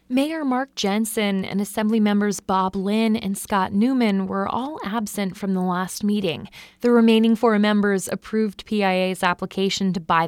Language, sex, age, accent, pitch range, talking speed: English, female, 20-39, American, 195-255 Hz, 160 wpm